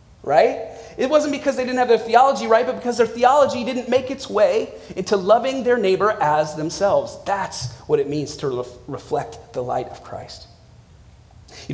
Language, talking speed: English, 180 wpm